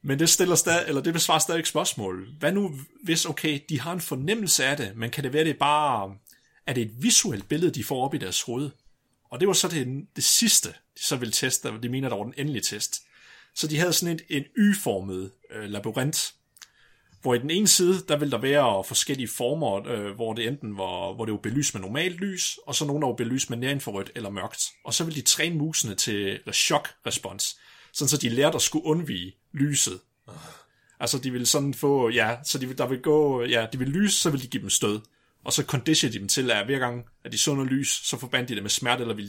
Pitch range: 120-155 Hz